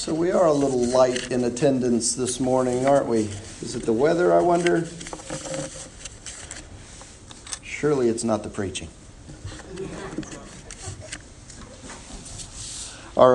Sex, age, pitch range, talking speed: male, 50-69, 110-145 Hz, 110 wpm